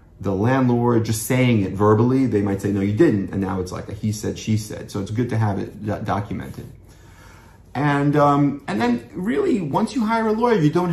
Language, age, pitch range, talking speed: English, 30-49, 100-130 Hz, 215 wpm